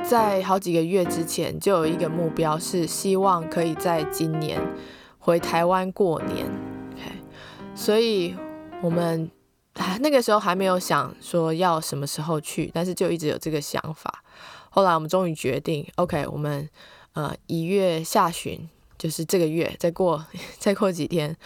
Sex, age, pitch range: female, 20-39, 160-195 Hz